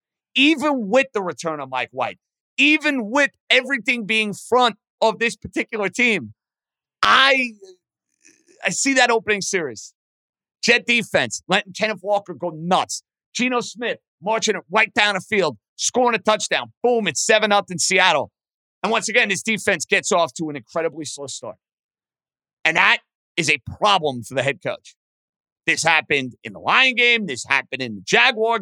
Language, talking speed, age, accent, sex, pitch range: English, 160 wpm, 50-69, American, male, 195-250 Hz